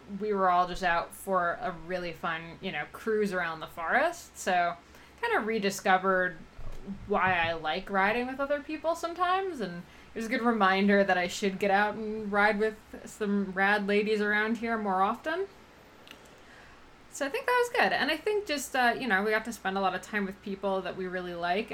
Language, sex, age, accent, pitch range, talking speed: English, female, 20-39, American, 180-215 Hz, 205 wpm